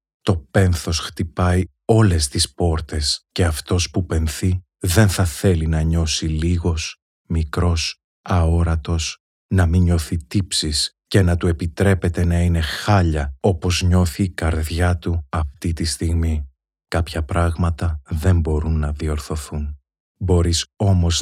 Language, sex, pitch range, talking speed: Greek, male, 80-95 Hz, 125 wpm